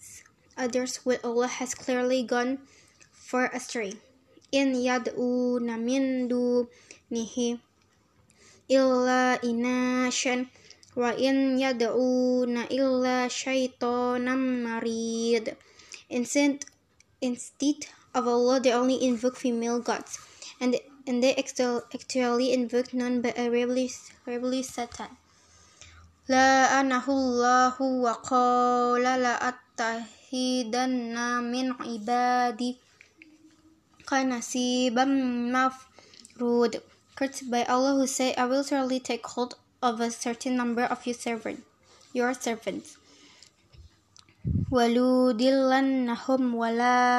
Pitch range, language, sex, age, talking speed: 245-260 Hz, English, female, 10-29, 95 wpm